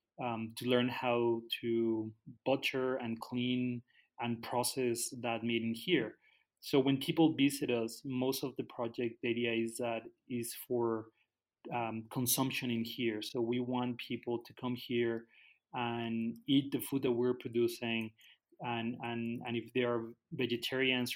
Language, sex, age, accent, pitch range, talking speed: English, male, 30-49, Mexican, 115-130 Hz, 155 wpm